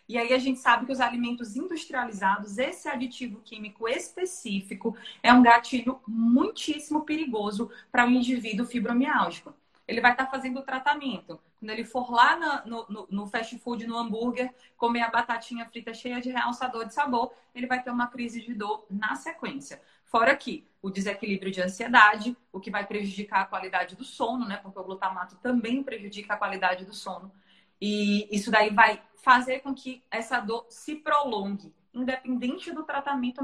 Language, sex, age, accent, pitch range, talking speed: Portuguese, female, 20-39, Brazilian, 210-255 Hz, 175 wpm